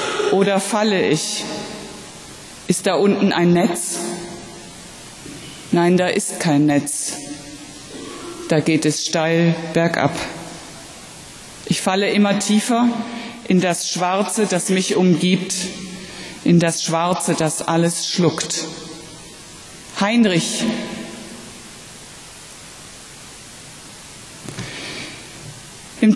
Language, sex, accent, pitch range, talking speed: German, female, German, 170-220 Hz, 85 wpm